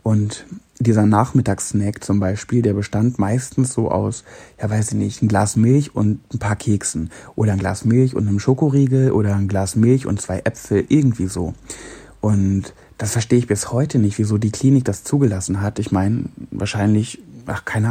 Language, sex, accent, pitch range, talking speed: German, male, German, 105-130 Hz, 185 wpm